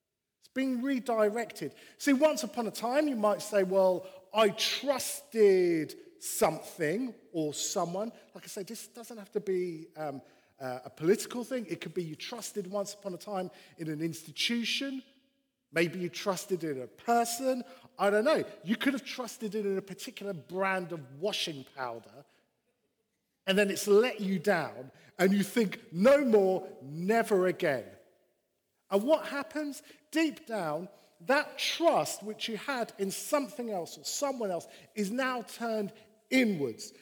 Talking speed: 155 wpm